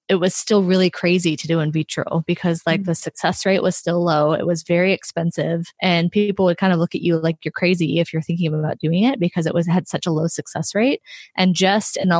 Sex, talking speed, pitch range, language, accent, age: female, 250 wpm, 170-195 Hz, English, American, 20-39